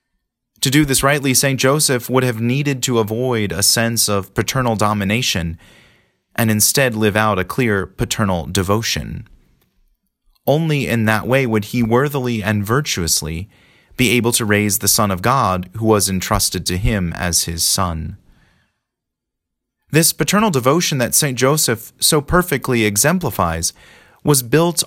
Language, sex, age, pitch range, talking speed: English, male, 30-49, 105-135 Hz, 145 wpm